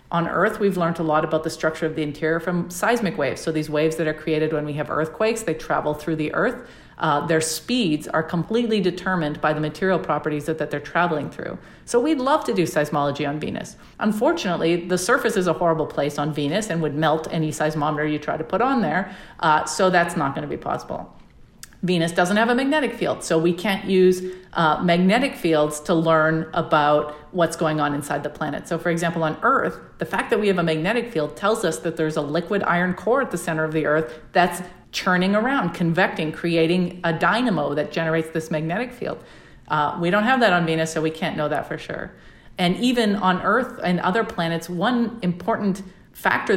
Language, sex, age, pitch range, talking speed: English, female, 40-59, 155-190 Hz, 215 wpm